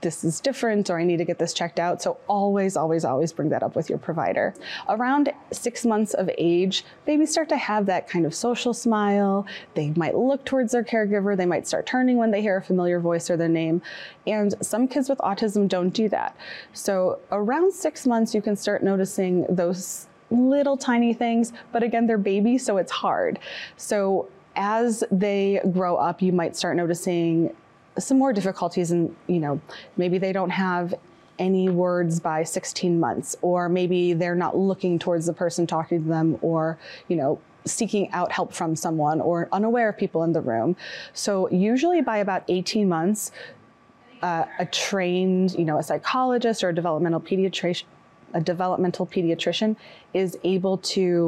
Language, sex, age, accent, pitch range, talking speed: English, female, 20-39, American, 175-220 Hz, 180 wpm